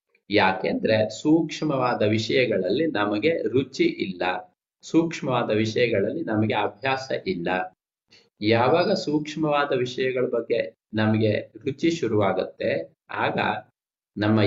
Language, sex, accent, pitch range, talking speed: Kannada, male, native, 110-150 Hz, 85 wpm